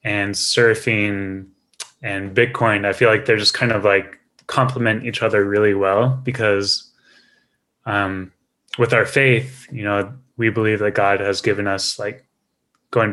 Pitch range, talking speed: 100-115 Hz, 150 wpm